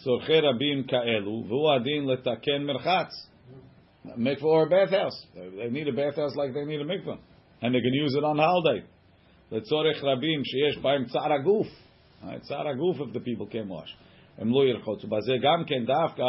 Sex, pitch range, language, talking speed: male, 120-150 Hz, English, 160 wpm